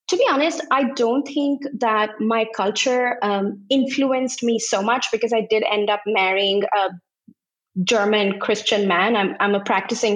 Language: English